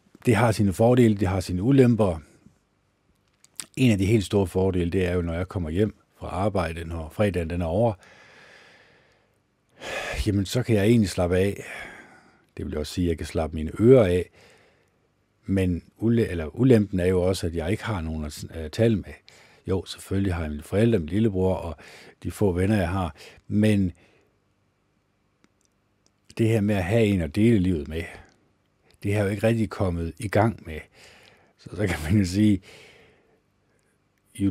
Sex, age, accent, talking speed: male, 60-79, native, 180 wpm